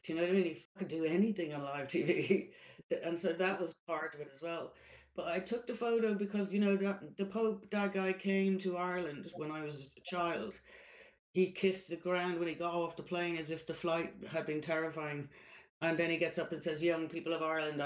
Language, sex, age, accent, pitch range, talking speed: English, female, 60-79, British, 135-170 Hz, 240 wpm